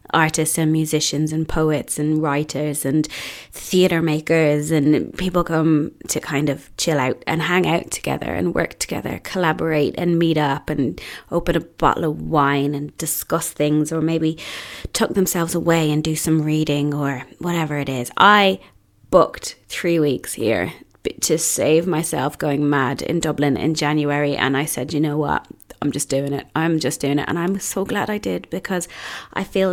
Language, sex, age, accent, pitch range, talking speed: English, female, 20-39, British, 150-180 Hz, 180 wpm